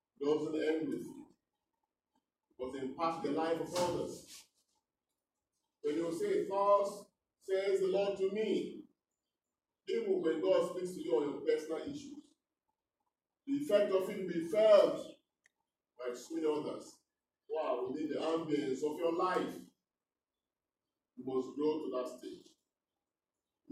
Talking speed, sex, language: 140 wpm, male, English